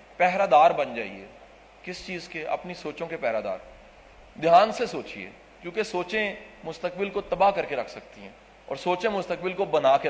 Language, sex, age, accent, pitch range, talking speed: English, male, 30-49, Indian, 165-220 Hz, 145 wpm